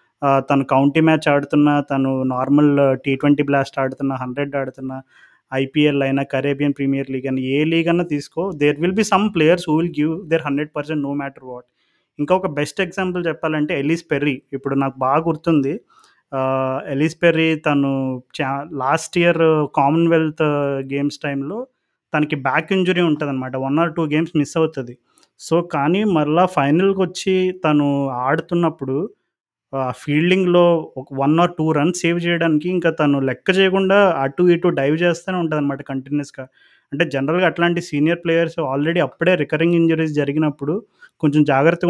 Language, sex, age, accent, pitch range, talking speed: Telugu, male, 30-49, native, 140-170 Hz, 150 wpm